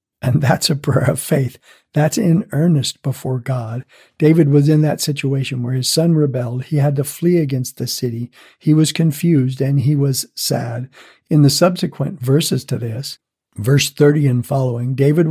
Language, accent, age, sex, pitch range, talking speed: English, American, 60-79, male, 130-150 Hz, 175 wpm